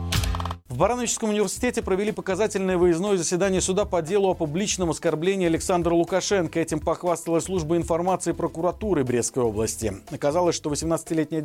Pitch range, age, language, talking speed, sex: 135-195 Hz, 40-59, Russian, 130 wpm, male